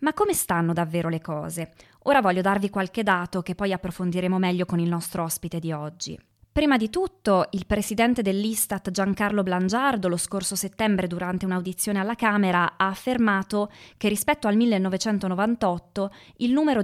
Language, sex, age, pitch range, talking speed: Italian, female, 20-39, 180-220 Hz, 155 wpm